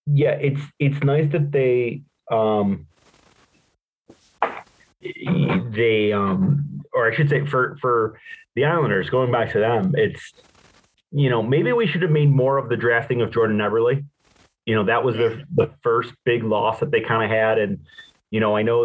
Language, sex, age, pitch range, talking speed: English, male, 30-49, 110-150 Hz, 175 wpm